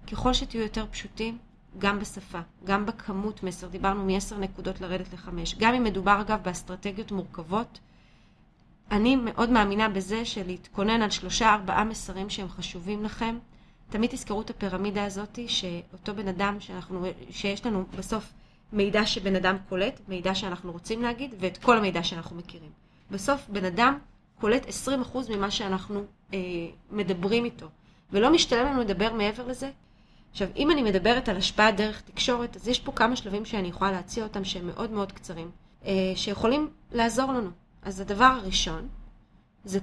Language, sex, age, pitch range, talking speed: Hebrew, female, 30-49, 185-225 Hz, 150 wpm